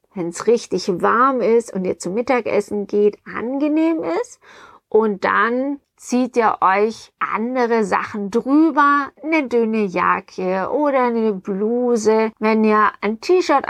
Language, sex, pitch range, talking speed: German, female, 210-255 Hz, 130 wpm